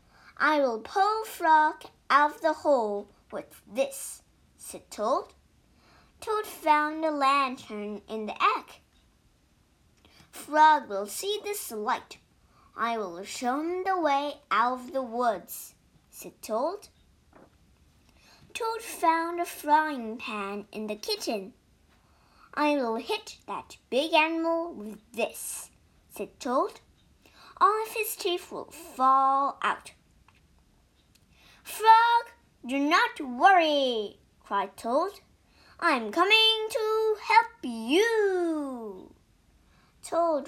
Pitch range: 235-355 Hz